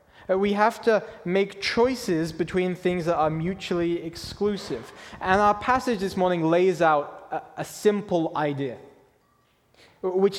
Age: 20-39